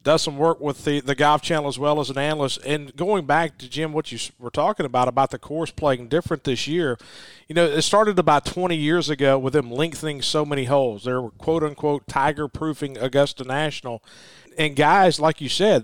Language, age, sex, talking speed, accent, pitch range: English, 40-59, male, 210 wpm, American, 135-165 Hz